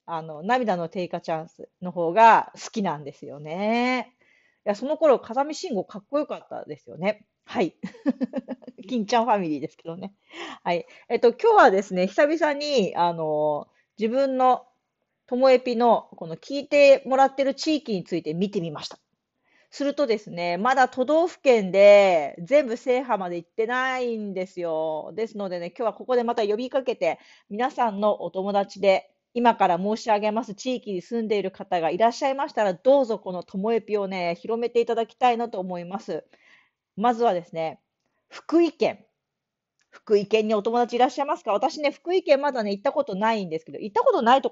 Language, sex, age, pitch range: Japanese, female, 40-59, 185-255 Hz